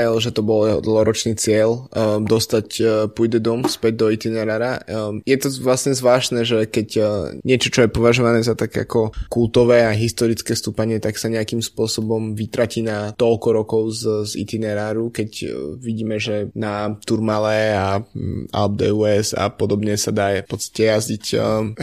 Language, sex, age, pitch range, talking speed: Slovak, male, 20-39, 110-120 Hz, 165 wpm